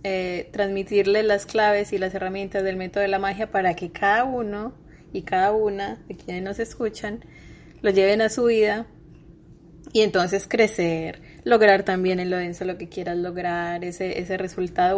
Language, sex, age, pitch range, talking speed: Spanish, female, 20-39, 185-225 Hz, 170 wpm